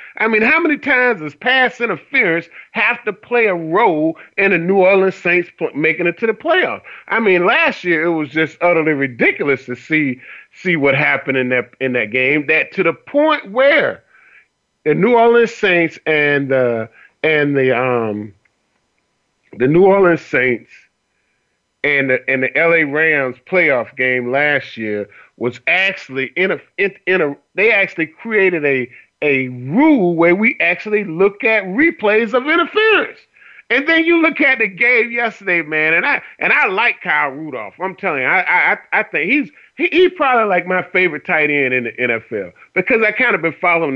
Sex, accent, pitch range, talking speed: male, American, 140-225 Hz, 185 wpm